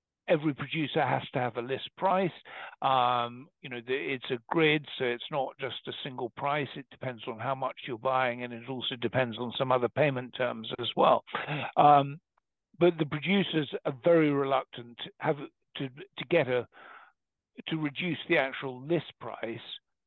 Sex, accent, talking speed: male, British, 175 wpm